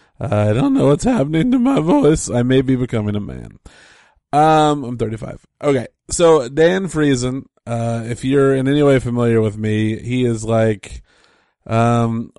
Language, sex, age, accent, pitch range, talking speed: English, male, 20-39, American, 110-155 Hz, 165 wpm